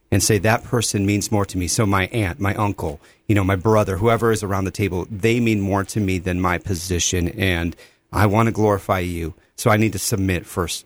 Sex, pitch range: male, 95-115 Hz